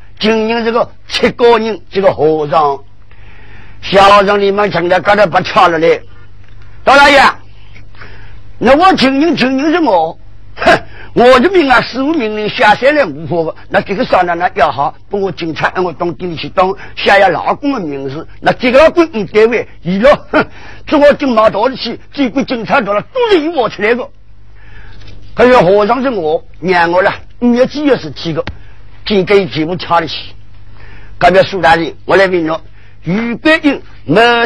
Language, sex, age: Chinese, male, 50-69